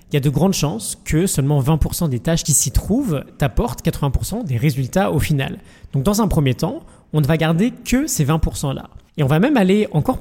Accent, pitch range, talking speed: French, 135-170 Hz, 230 wpm